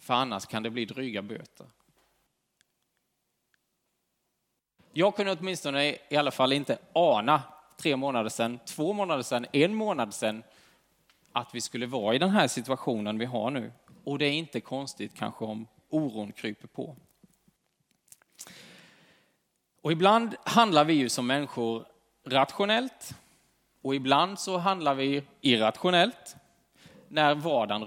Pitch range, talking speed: 120-160 Hz, 130 wpm